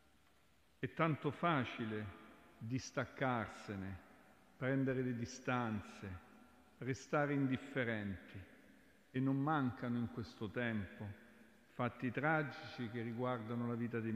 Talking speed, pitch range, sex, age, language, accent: 95 wpm, 110-140 Hz, male, 50-69, Italian, native